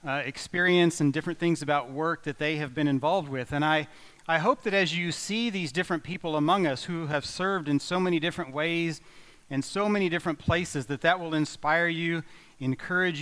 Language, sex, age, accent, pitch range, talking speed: English, male, 40-59, American, 145-175 Hz, 205 wpm